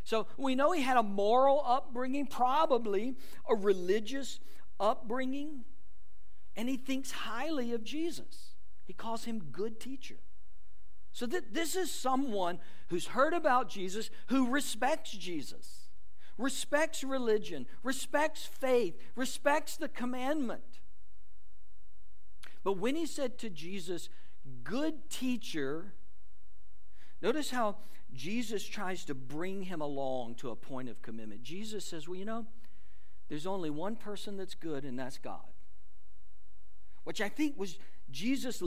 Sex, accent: male, American